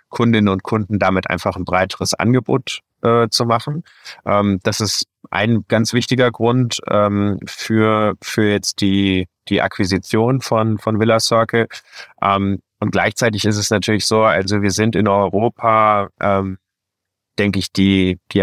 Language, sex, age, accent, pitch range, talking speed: German, male, 30-49, German, 95-105 Hz, 150 wpm